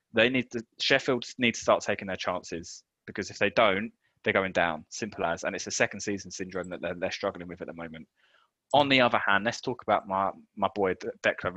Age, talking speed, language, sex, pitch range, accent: 20-39, 230 wpm, English, male, 95-115 Hz, British